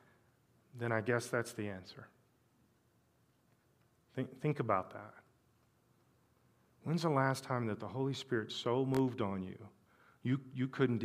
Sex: male